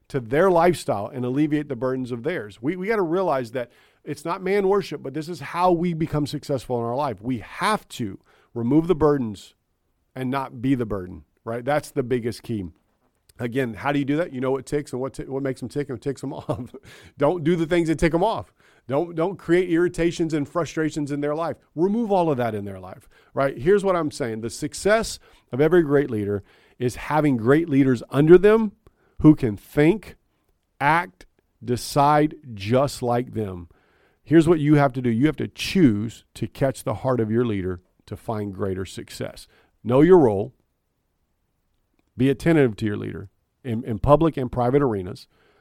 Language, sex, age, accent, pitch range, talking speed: English, male, 40-59, American, 115-150 Hz, 195 wpm